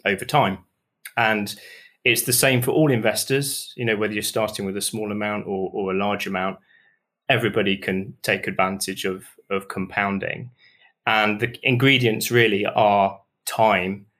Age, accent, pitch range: 20-39, British, 105-130 Hz